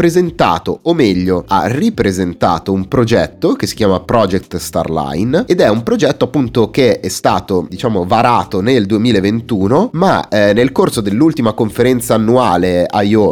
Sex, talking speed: male, 145 wpm